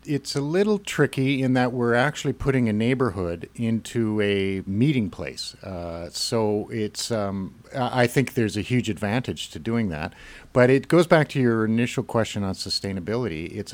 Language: English